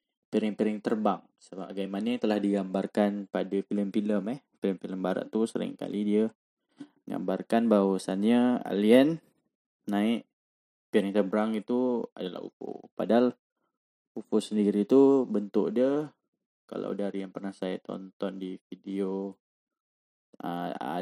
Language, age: Malay, 10-29